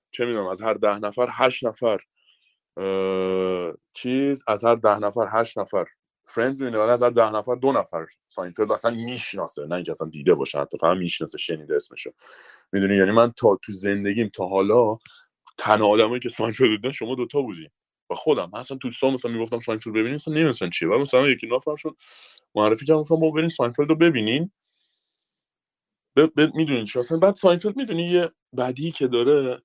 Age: 30-49